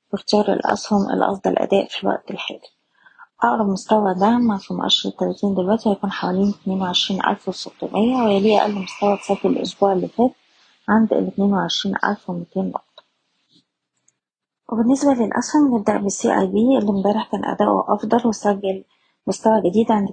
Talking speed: 130 wpm